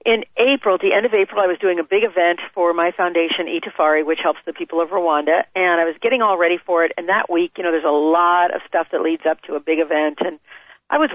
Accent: American